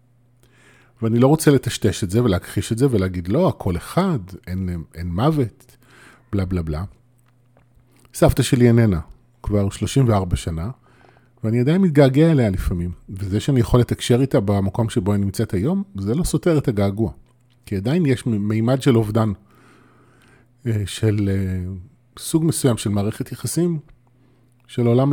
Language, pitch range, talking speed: Hebrew, 105-125 Hz, 140 wpm